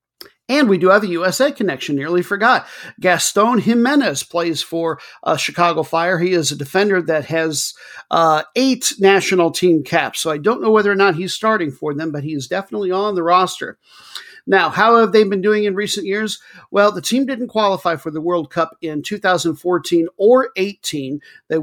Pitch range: 160-200 Hz